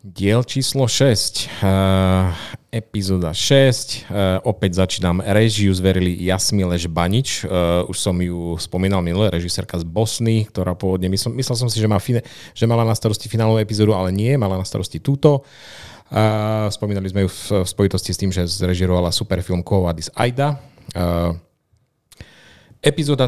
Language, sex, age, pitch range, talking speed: Slovak, male, 30-49, 95-115 Hz, 150 wpm